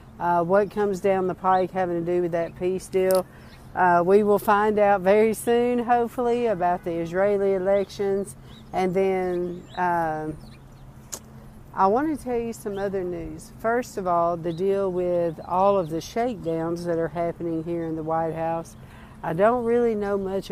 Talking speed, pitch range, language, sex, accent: 175 wpm, 170-200 Hz, English, female, American